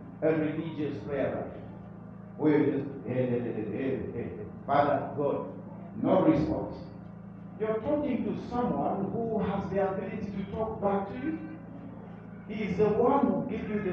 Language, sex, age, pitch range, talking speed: English, male, 50-69, 155-200 Hz, 165 wpm